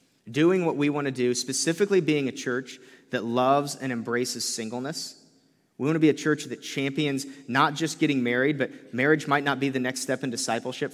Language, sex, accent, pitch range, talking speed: English, male, American, 120-145 Hz, 205 wpm